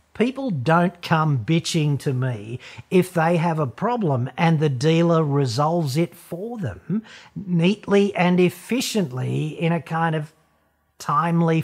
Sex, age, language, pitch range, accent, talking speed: male, 50-69, English, 130-175 Hz, Australian, 135 wpm